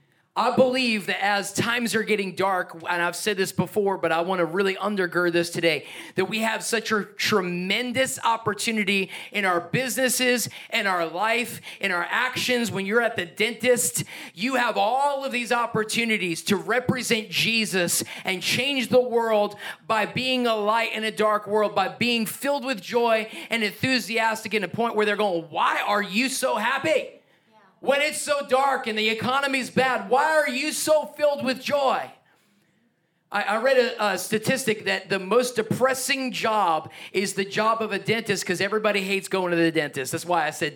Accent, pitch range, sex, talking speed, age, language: American, 175-235 Hz, male, 185 wpm, 30-49, English